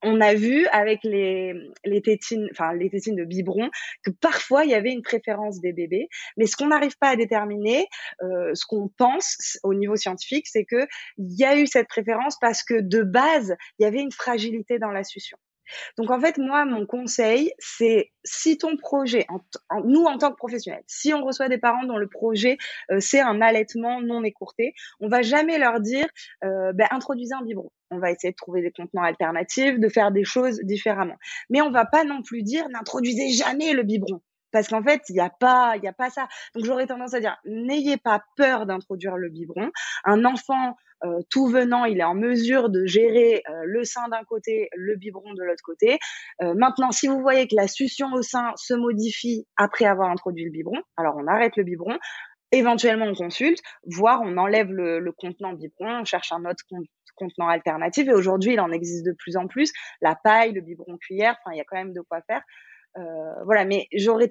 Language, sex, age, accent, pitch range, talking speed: French, female, 20-39, French, 190-255 Hz, 215 wpm